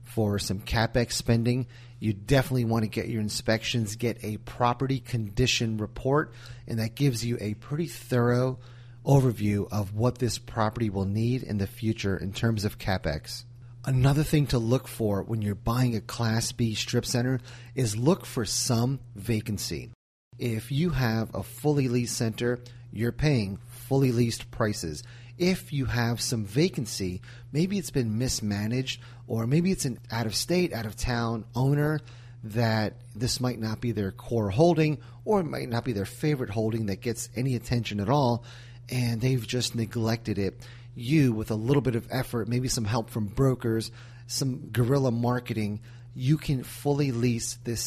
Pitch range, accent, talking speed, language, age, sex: 110-125 Hz, American, 165 wpm, English, 30-49, male